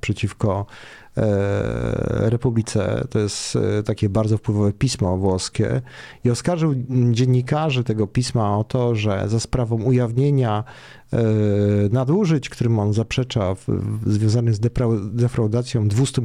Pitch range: 110-130 Hz